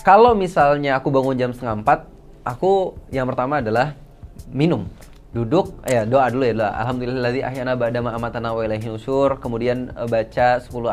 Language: Indonesian